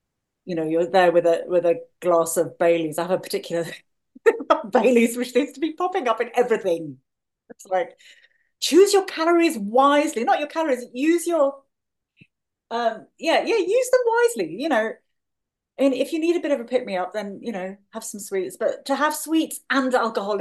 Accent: British